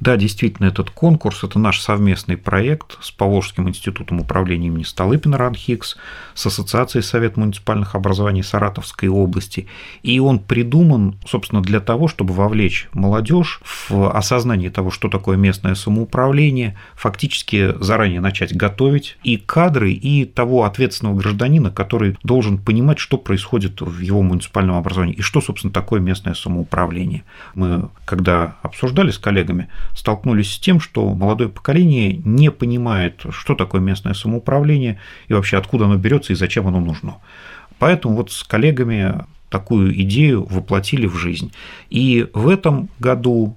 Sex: male